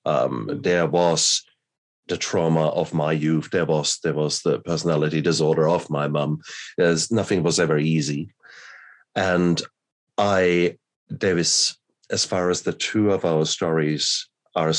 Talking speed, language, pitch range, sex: 140 wpm, English, 80-95 Hz, male